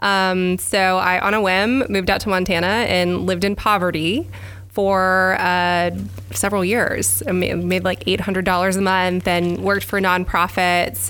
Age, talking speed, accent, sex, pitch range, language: 20-39, 150 wpm, American, female, 175-200 Hz, English